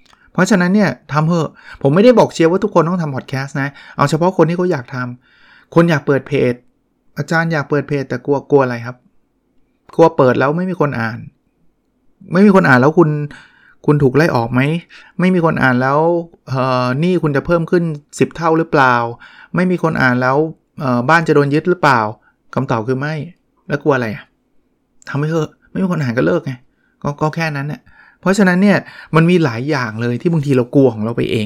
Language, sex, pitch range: Thai, male, 125-165 Hz